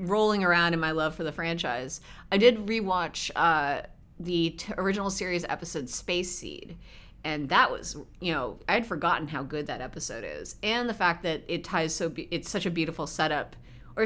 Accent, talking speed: American, 190 wpm